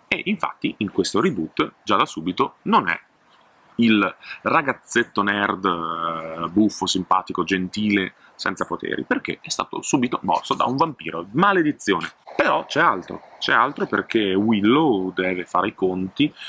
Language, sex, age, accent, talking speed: Italian, male, 30-49, native, 140 wpm